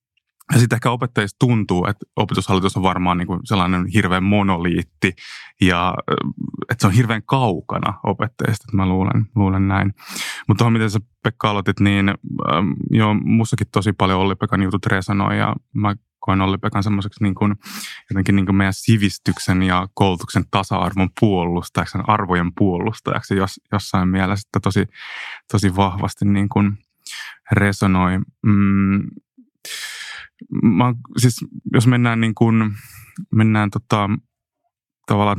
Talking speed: 110 wpm